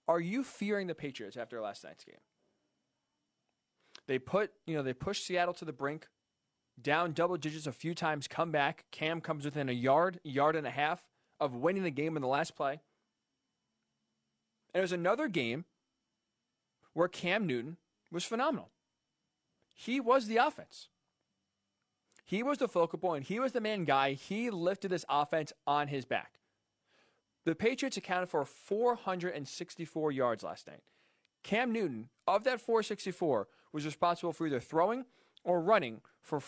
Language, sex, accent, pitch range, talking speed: English, male, American, 145-200 Hz, 160 wpm